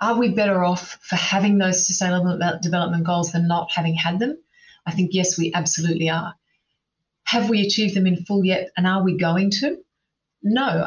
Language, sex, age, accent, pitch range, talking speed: English, female, 30-49, Australian, 170-195 Hz, 190 wpm